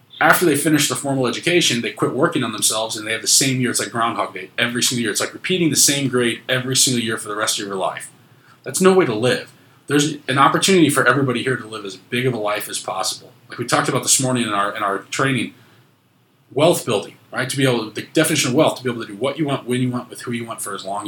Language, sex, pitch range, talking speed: English, male, 110-140 Hz, 280 wpm